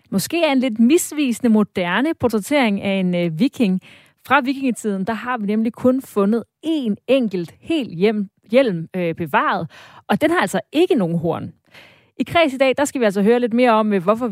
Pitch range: 185-250 Hz